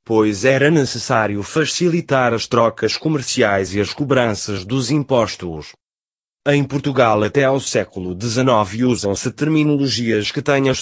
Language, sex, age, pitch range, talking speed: Portuguese, male, 30-49, 95-130 Hz, 130 wpm